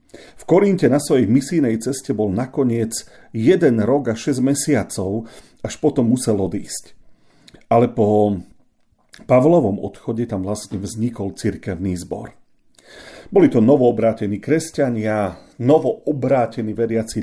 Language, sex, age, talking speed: Slovak, male, 40-59, 110 wpm